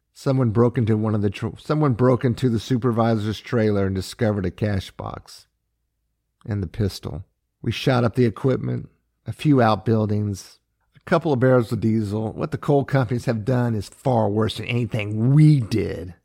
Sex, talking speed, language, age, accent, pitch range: male, 175 wpm, English, 50-69, American, 100-130 Hz